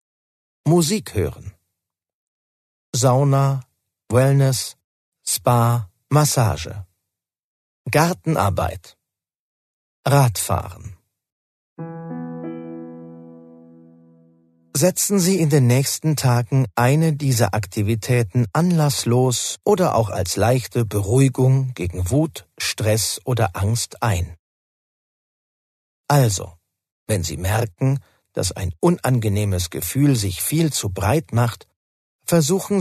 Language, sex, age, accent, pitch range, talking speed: German, male, 50-69, German, 90-140 Hz, 80 wpm